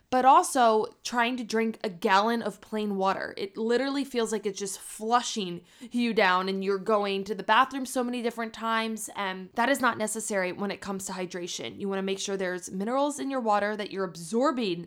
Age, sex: 20-39, female